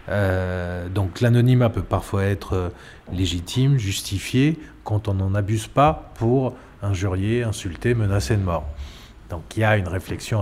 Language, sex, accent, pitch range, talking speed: French, male, French, 100-130 Hz, 145 wpm